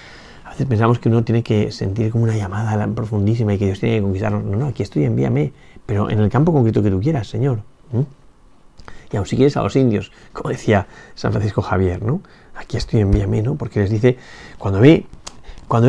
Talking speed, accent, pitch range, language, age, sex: 210 wpm, Spanish, 105-135 Hz, Spanish, 40-59, male